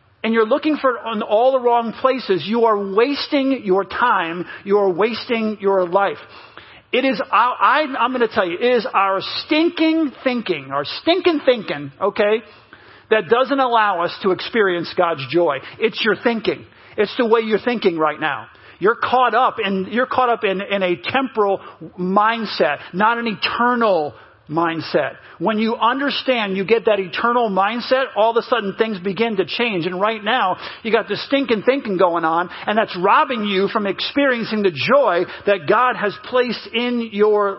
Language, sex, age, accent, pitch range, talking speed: English, male, 40-59, American, 195-250 Hz, 175 wpm